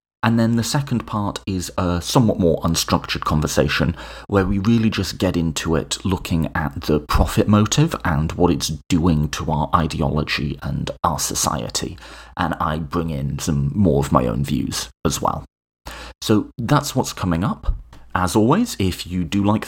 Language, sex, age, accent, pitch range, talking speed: English, male, 30-49, British, 80-105 Hz, 170 wpm